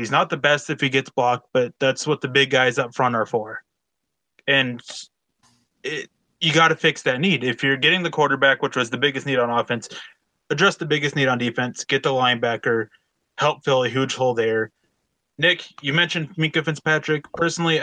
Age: 20-39